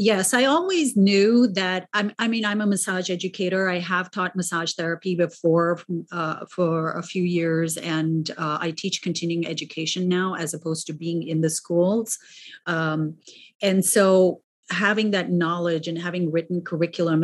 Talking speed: 160 wpm